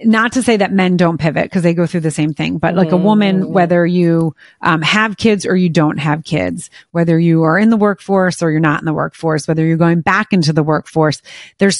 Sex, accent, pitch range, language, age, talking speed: female, American, 165-205 Hz, English, 30-49, 245 wpm